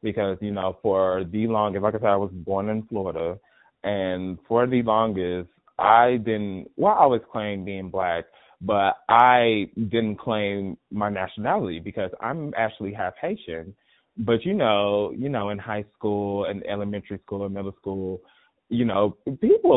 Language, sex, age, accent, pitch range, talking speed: English, male, 20-39, American, 100-135 Hz, 165 wpm